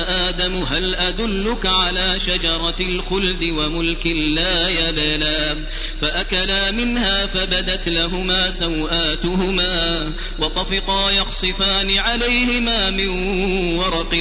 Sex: male